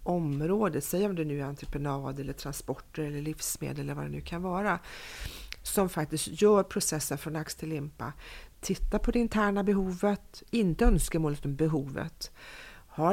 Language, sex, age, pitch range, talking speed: Swedish, female, 40-59, 155-195 Hz, 165 wpm